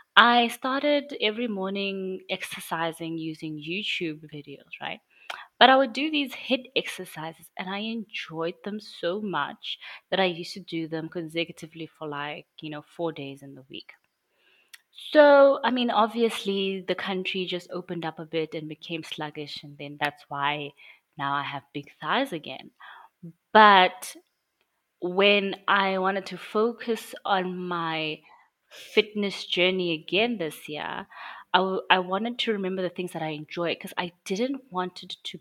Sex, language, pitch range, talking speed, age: female, English, 160-200 Hz, 155 wpm, 20-39